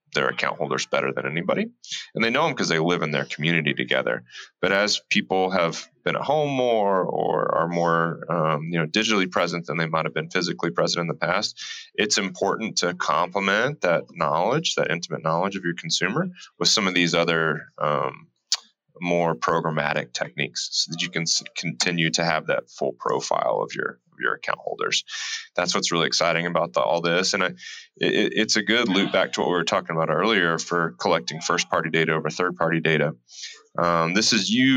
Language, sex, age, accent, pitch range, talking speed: English, male, 30-49, American, 80-95 Hz, 200 wpm